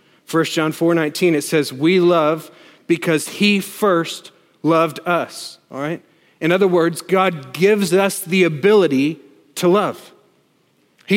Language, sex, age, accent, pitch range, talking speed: English, male, 40-59, American, 145-190 Hz, 140 wpm